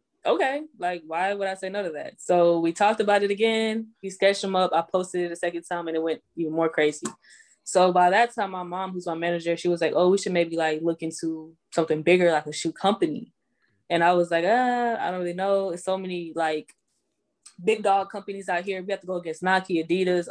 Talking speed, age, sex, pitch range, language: 240 wpm, 10-29, female, 165-195 Hz, English